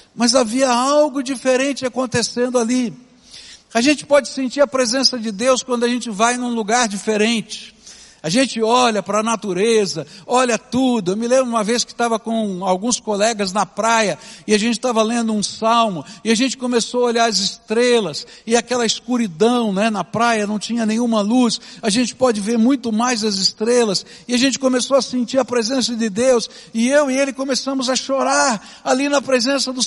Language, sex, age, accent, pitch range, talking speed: Portuguese, male, 60-79, Brazilian, 215-265 Hz, 190 wpm